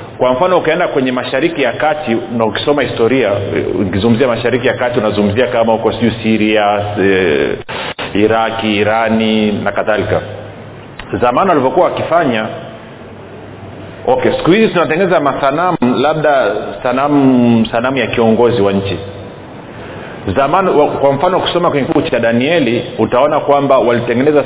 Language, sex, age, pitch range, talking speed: Swahili, male, 40-59, 110-145 Hz, 120 wpm